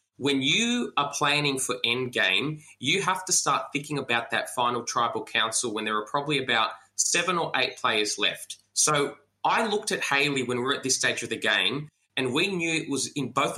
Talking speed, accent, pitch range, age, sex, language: 210 wpm, Australian, 120-150 Hz, 20-39, male, English